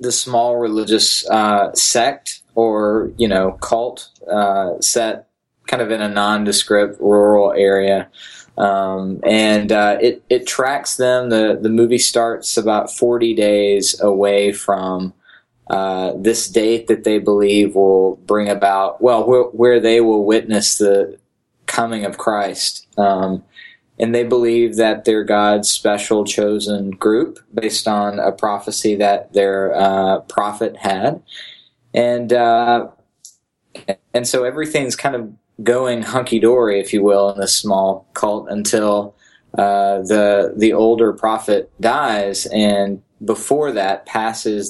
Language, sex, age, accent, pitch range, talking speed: English, male, 20-39, American, 100-115 Hz, 135 wpm